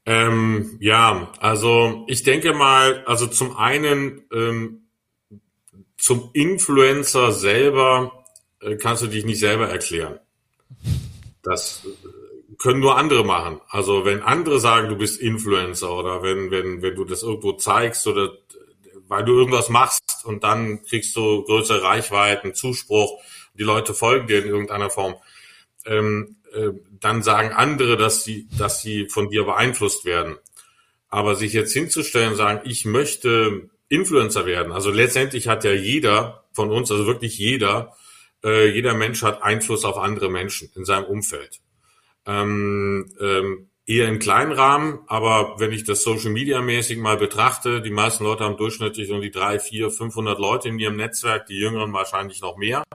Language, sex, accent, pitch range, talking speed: German, male, German, 105-120 Hz, 155 wpm